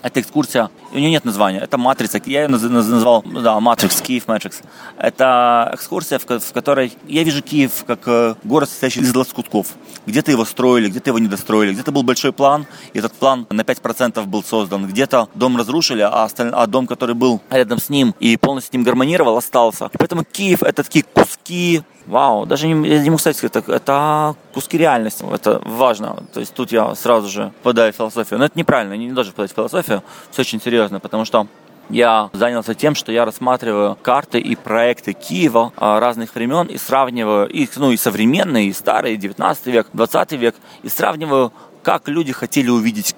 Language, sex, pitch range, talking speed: Russian, male, 115-140 Hz, 185 wpm